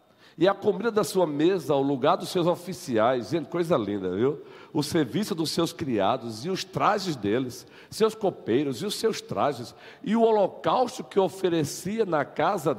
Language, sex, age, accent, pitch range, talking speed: Portuguese, male, 50-69, Brazilian, 130-190 Hz, 170 wpm